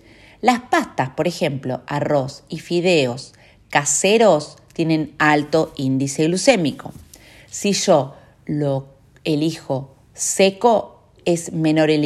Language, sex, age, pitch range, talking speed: Spanish, female, 40-59, 145-215 Hz, 100 wpm